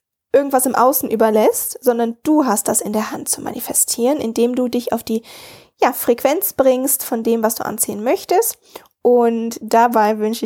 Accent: German